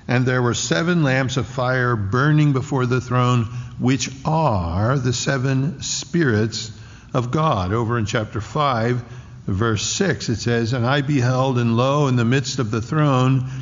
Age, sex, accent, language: 60-79, male, American, English